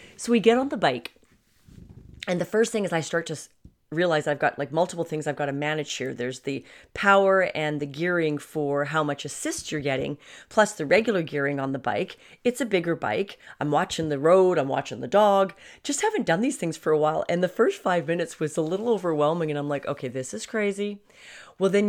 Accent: American